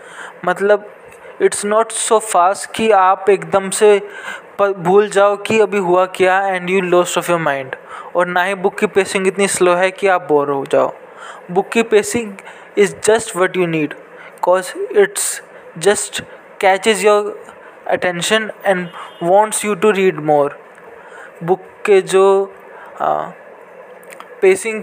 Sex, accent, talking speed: male, Indian, 115 wpm